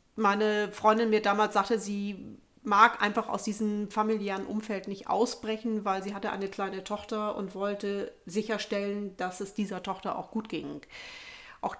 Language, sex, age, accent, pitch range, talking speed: German, female, 40-59, German, 190-220 Hz, 160 wpm